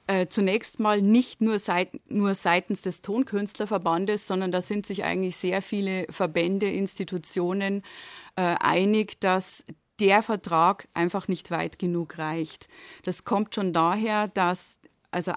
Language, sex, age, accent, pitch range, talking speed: German, female, 30-49, German, 180-215 Hz, 135 wpm